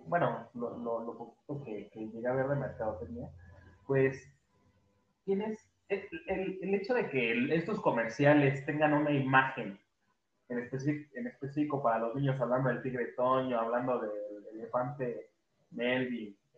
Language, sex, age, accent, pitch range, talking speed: Spanish, male, 20-39, Mexican, 125-180 Hz, 150 wpm